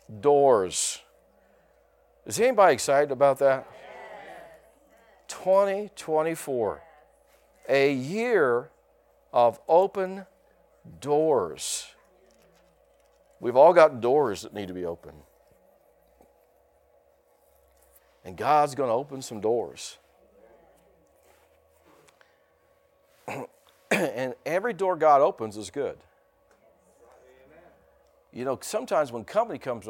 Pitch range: 115-150 Hz